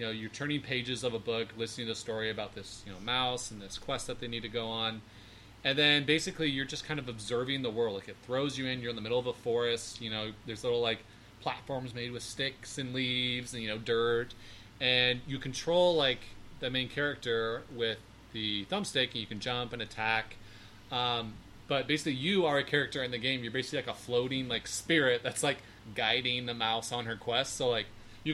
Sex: male